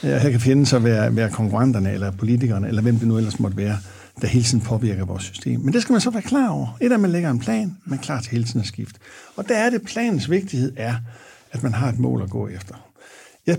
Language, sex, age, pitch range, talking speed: Danish, male, 60-79, 110-140 Hz, 270 wpm